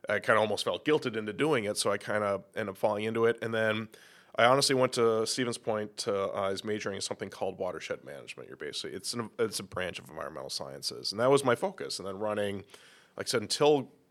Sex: male